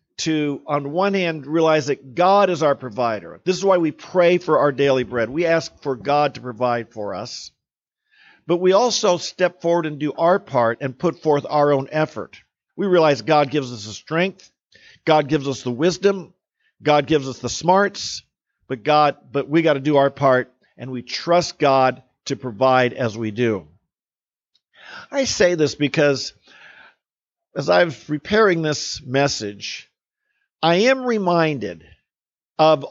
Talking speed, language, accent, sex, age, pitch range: 165 wpm, English, American, male, 50-69, 135-175 Hz